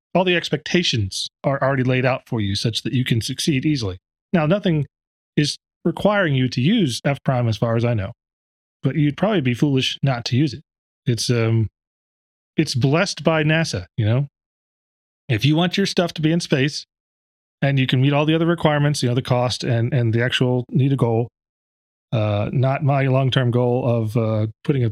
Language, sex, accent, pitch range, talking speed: English, male, American, 115-155 Hz, 195 wpm